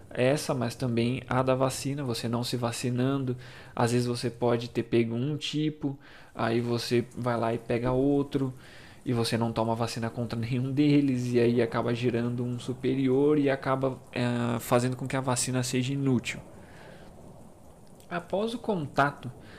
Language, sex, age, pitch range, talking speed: Portuguese, male, 20-39, 115-150 Hz, 160 wpm